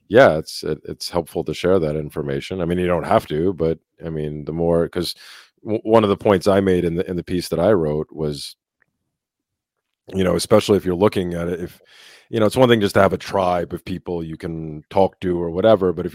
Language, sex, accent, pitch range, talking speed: English, male, American, 85-100 Hz, 235 wpm